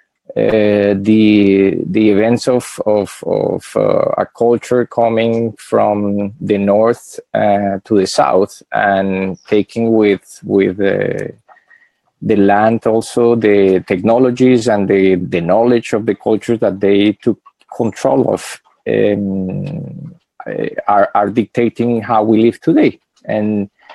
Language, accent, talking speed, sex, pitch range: English, Spanish, 120 wpm, male, 105-120 Hz